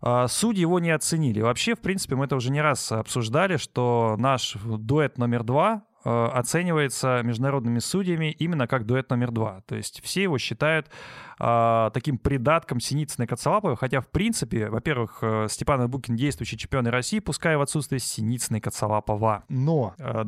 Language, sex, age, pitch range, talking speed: Russian, male, 20-39, 120-160 Hz, 155 wpm